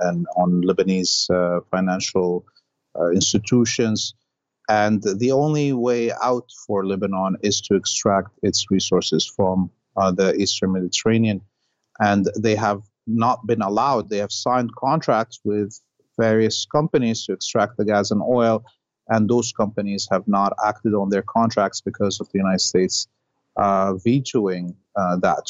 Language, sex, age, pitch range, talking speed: English, male, 30-49, 100-115 Hz, 145 wpm